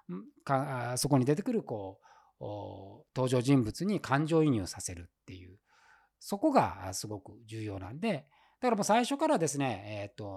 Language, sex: Japanese, male